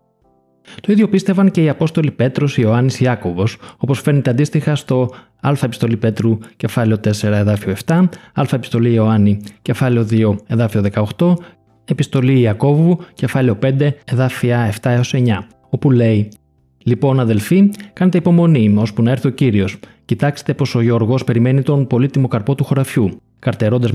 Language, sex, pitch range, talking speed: Greek, male, 110-155 Hz, 140 wpm